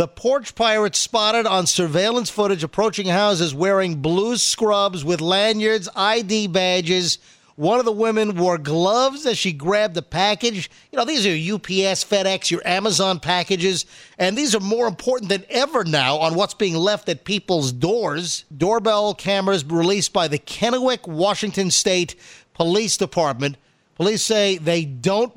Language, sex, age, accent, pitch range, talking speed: English, male, 50-69, American, 170-215 Hz, 155 wpm